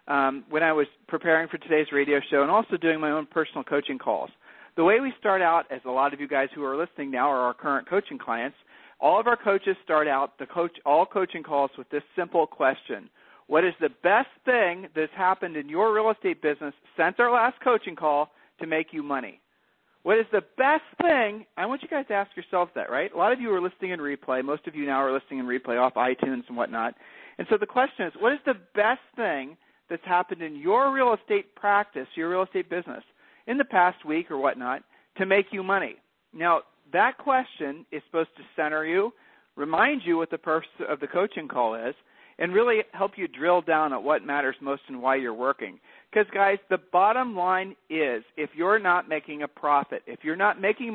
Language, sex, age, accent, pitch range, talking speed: English, male, 40-59, American, 145-205 Hz, 220 wpm